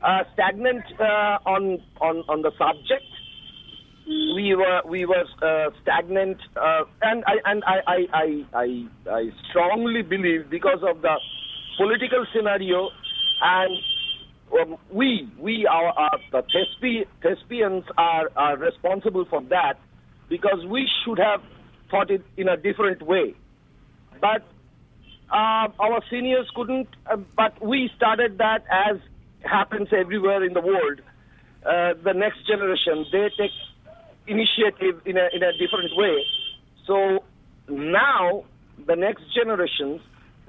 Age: 50-69